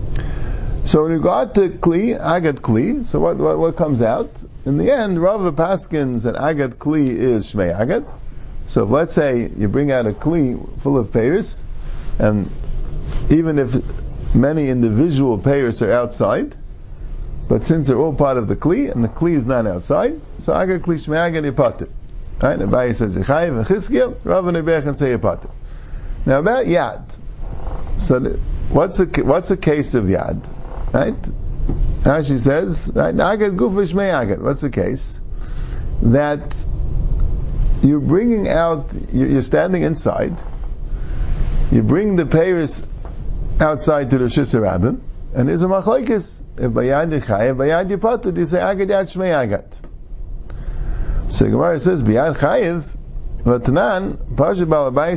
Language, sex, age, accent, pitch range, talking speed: English, male, 50-69, American, 120-170 Hz, 115 wpm